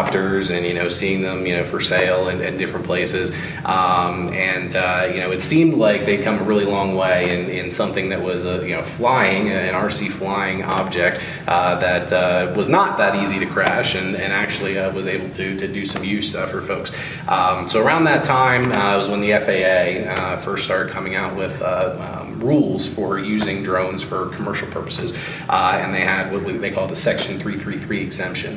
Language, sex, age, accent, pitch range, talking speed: English, male, 30-49, American, 95-105 Hz, 210 wpm